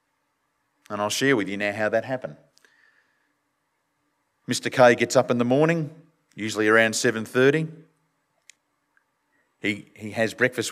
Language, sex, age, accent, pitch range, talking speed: English, male, 40-59, Australian, 110-145 Hz, 130 wpm